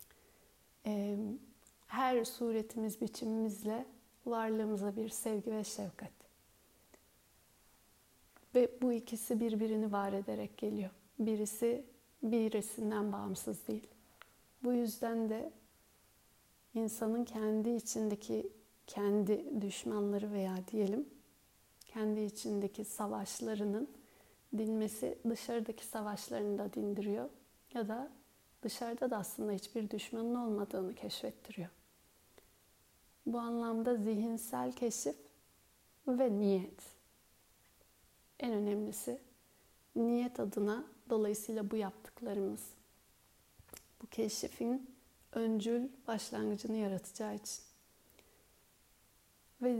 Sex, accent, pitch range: female, native, 205-235 Hz